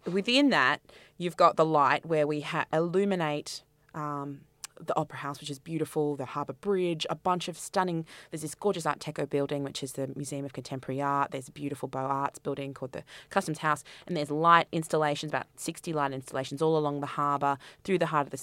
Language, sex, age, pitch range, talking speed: English, female, 20-39, 145-175 Hz, 205 wpm